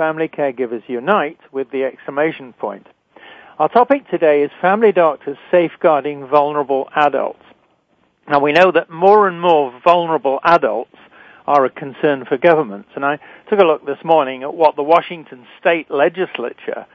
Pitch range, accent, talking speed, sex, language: 140-180 Hz, British, 150 wpm, male, English